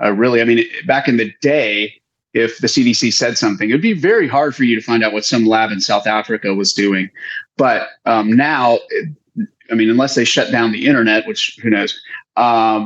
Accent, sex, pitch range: American, male, 110-160 Hz